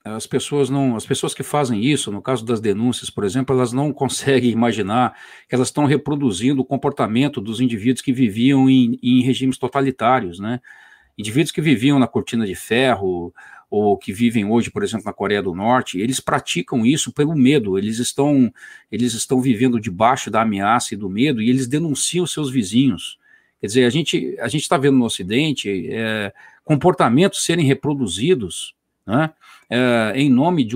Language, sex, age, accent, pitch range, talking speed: English, male, 50-69, Brazilian, 110-140 Hz, 175 wpm